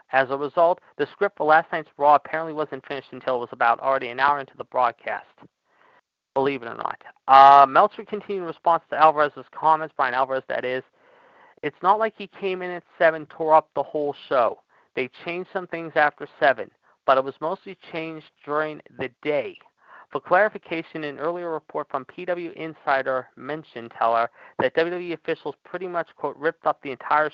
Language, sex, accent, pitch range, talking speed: English, male, American, 135-170 Hz, 185 wpm